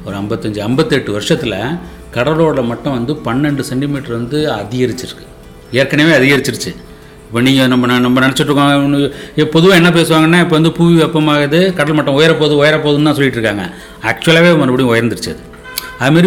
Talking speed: 130 wpm